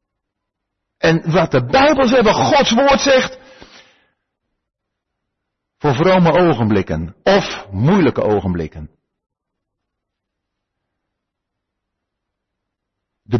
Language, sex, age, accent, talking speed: Finnish, male, 50-69, Dutch, 65 wpm